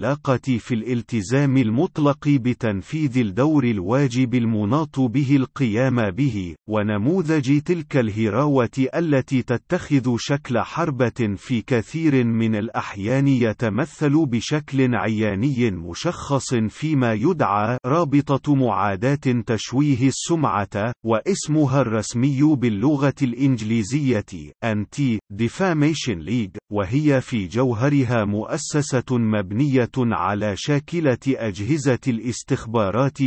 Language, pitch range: Arabic, 110-140 Hz